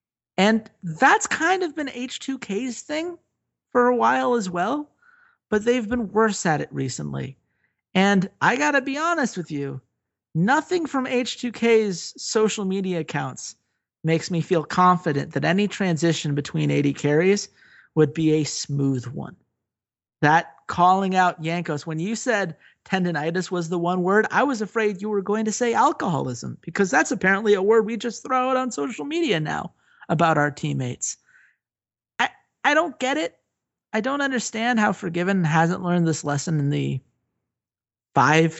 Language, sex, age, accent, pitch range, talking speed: English, male, 40-59, American, 150-220 Hz, 160 wpm